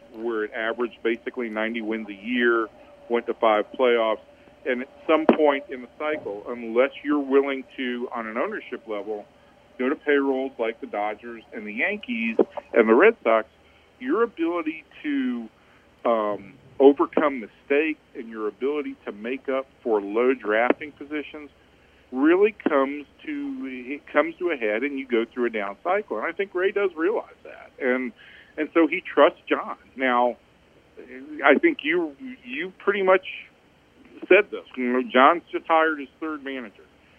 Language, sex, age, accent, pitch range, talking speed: English, male, 50-69, American, 115-165 Hz, 160 wpm